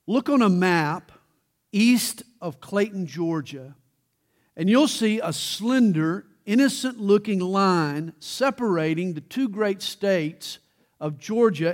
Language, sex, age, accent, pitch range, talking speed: English, male, 50-69, American, 175-245 Hz, 110 wpm